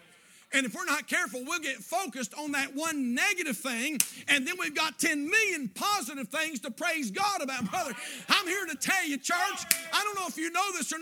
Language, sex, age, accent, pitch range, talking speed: English, male, 50-69, American, 245-340 Hz, 220 wpm